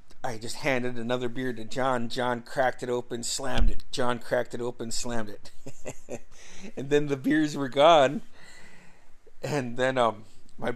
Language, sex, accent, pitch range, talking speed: English, male, American, 120-170 Hz, 160 wpm